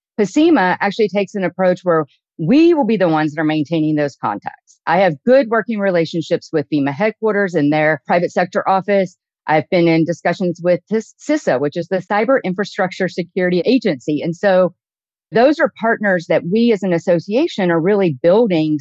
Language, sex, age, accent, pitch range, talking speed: English, female, 40-59, American, 170-210 Hz, 175 wpm